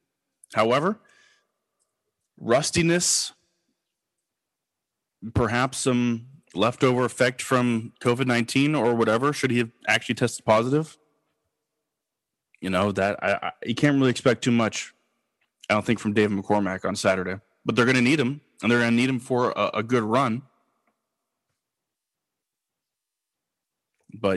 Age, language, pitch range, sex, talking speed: 20-39, English, 110-145 Hz, male, 125 wpm